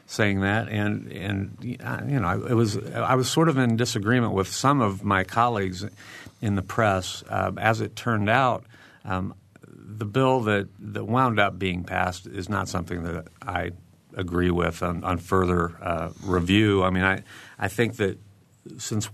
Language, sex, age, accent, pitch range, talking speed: English, male, 50-69, American, 90-105 Hz, 170 wpm